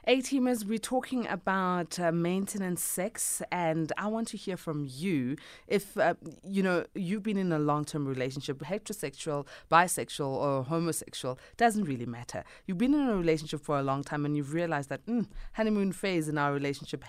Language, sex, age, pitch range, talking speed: English, female, 20-39, 145-215 Hz, 185 wpm